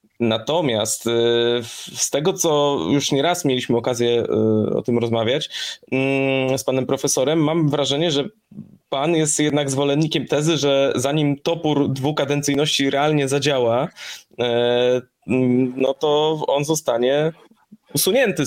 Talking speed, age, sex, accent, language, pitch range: 110 wpm, 20-39, male, native, Polish, 120-145 Hz